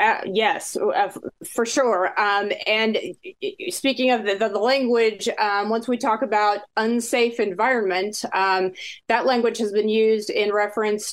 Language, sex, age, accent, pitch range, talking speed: English, female, 30-49, American, 205-250 Hz, 150 wpm